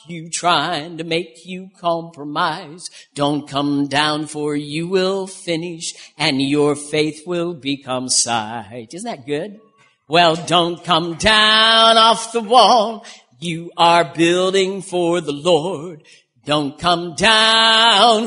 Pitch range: 160-225 Hz